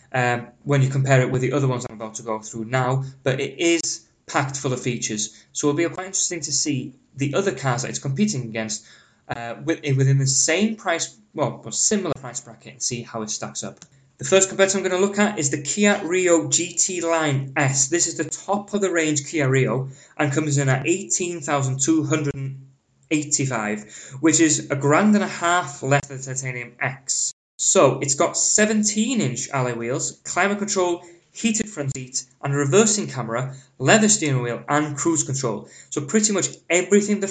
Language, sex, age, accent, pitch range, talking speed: English, male, 20-39, British, 130-170 Hz, 190 wpm